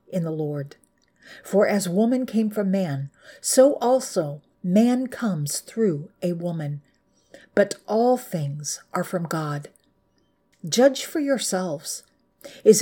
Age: 50-69